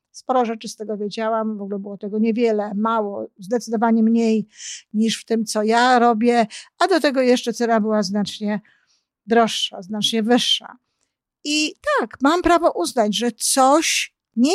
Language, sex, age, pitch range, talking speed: Polish, female, 50-69, 220-260 Hz, 155 wpm